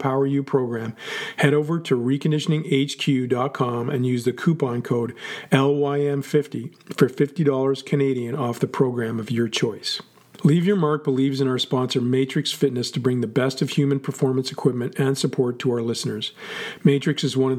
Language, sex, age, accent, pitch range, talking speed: English, male, 40-59, American, 125-145 Hz, 165 wpm